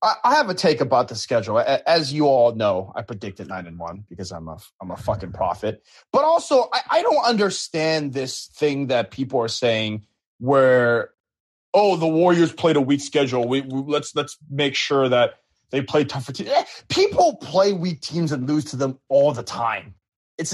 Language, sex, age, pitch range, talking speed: English, male, 30-49, 130-195 Hz, 195 wpm